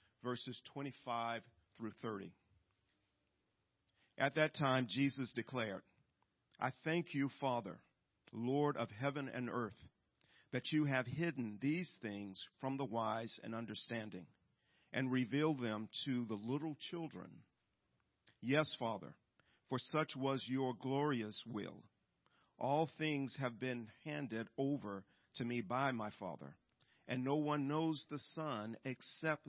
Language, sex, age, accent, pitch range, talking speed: English, male, 50-69, American, 110-140 Hz, 125 wpm